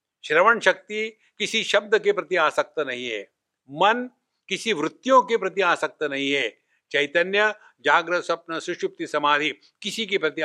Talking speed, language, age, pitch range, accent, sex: 145 wpm, English, 60-79, 150-210 Hz, Indian, male